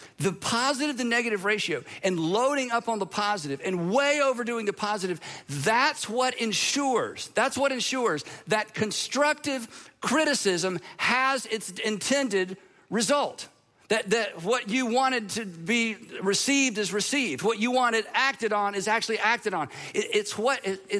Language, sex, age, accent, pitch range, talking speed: English, male, 50-69, American, 185-240 Hz, 150 wpm